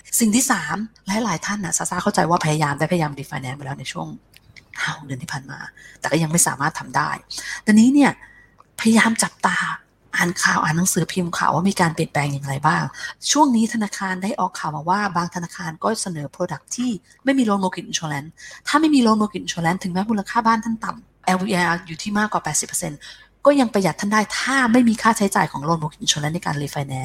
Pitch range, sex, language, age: 165-215 Hz, female, Thai, 20-39